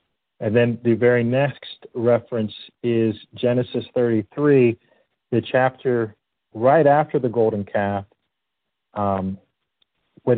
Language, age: English, 40-59